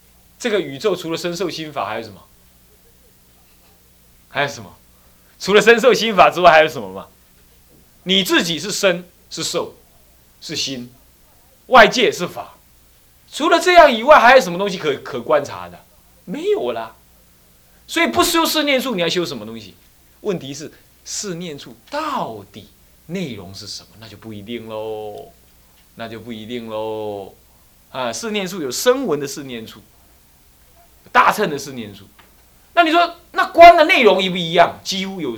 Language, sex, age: Chinese, male, 20-39